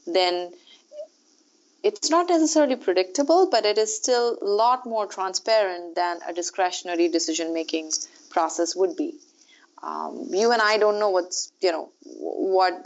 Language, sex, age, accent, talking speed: English, female, 30-49, Indian, 130 wpm